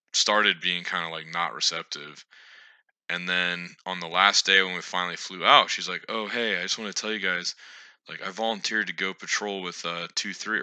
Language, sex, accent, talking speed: English, male, American, 215 wpm